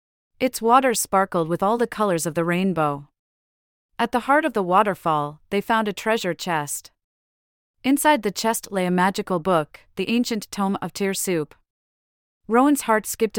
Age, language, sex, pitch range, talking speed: 30-49, English, female, 165-220 Hz, 165 wpm